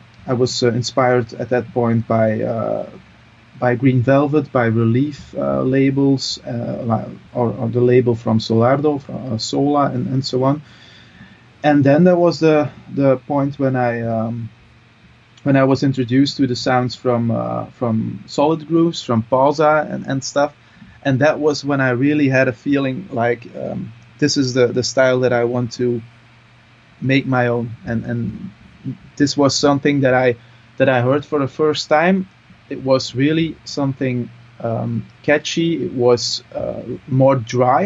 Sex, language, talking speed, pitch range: male, English, 165 wpm, 120-140 Hz